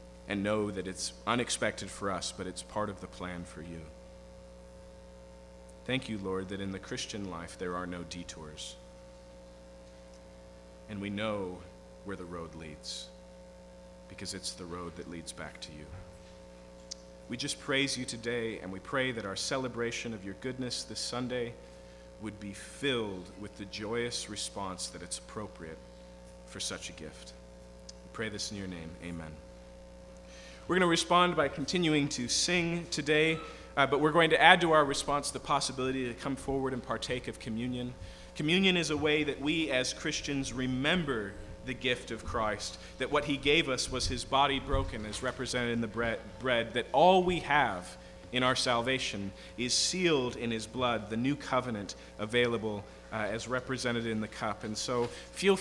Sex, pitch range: male, 75-130 Hz